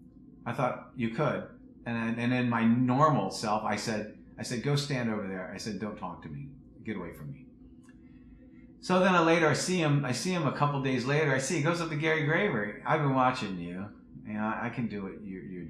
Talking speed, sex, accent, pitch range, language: 245 wpm, male, American, 95-130 Hz, English